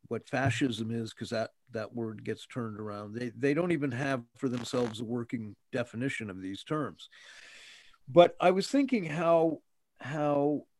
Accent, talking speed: American, 160 wpm